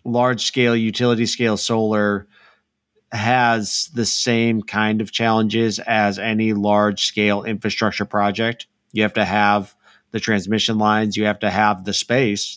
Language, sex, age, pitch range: English, male, 30-49, 105-120 Hz